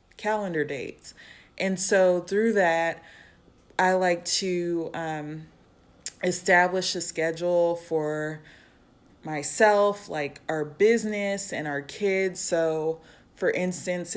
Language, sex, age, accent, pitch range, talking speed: English, female, 20-39, American, 155-185 Hz, 100 wpm